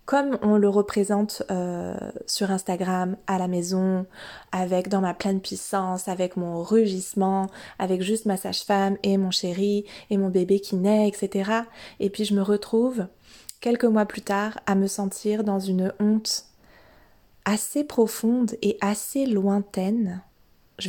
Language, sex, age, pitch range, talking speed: French, female, 20-39, 195-225 Hz, 150 wpm